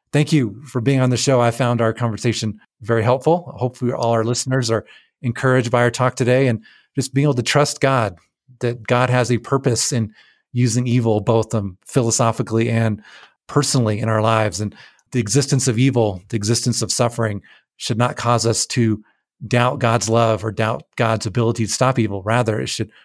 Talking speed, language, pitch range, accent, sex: 190 wpm, English, 110-130 Hz, American, male